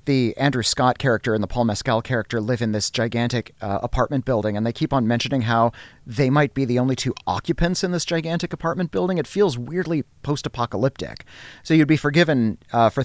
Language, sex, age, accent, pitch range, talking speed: English, male, 30-49, American, 115-140 Hz, 200 wpm